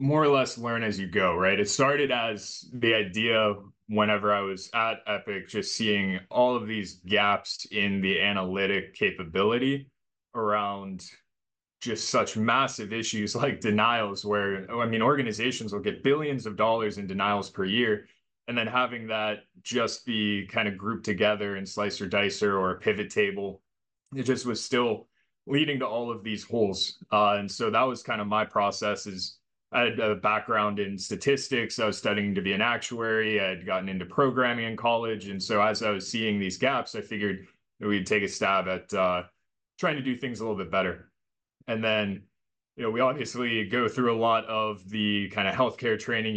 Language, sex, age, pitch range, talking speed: English, male, 20-39, 100-115 Hz, 190 wpm